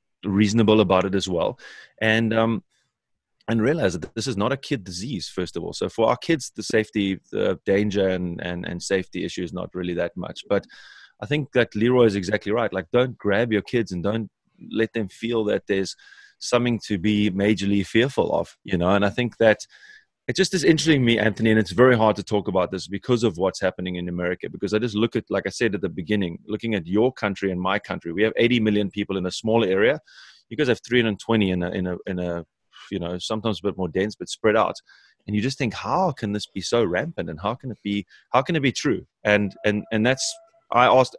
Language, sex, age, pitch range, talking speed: English, male, 30-49, 100-120 Hz, 240 wpm